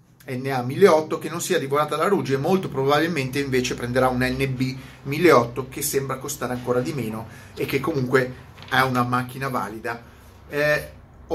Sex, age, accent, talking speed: male, 30-49, native, 150 wpm